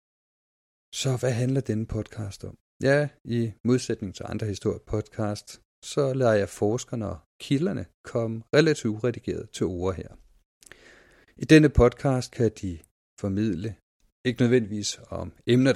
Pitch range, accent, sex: 95-125 Hz, native, male